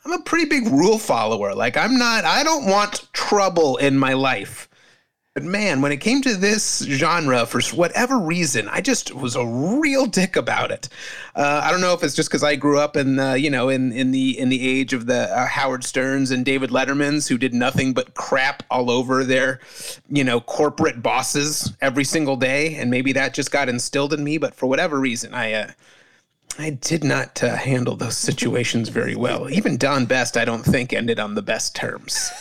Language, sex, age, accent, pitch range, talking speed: English, male, 30-49, American, 125-160 Hz, 210 wpm